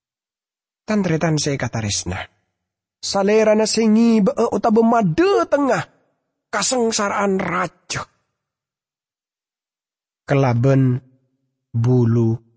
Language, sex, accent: English, male, Indonesian